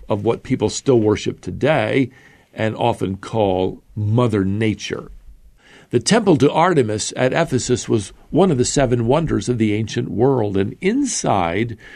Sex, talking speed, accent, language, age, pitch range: male, 145 wpm, American, English, 50-69, 110-140 Hz